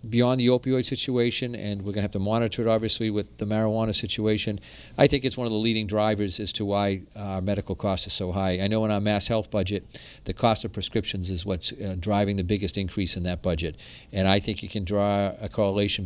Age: 50-69